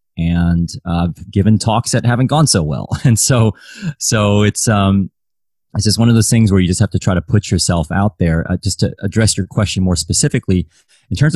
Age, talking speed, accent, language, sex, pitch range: 30-49, 220 wpm, American, English, male, 85-105 Hz